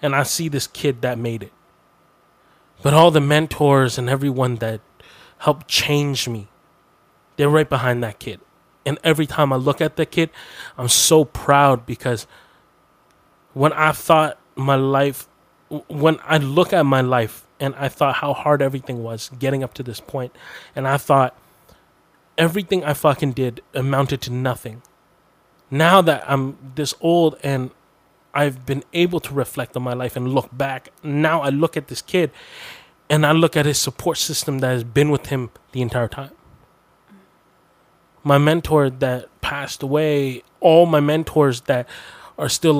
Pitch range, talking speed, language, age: 125-150 Hz, 165 wpm, English, 20-39